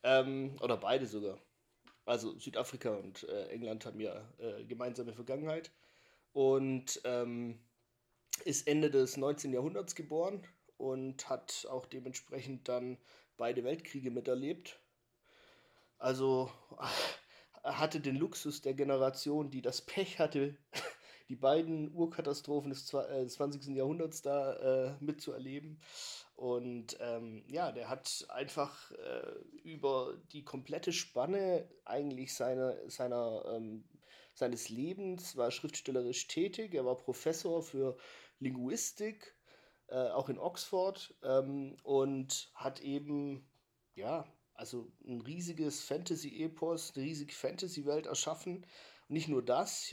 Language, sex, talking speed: German, male, 115 wpm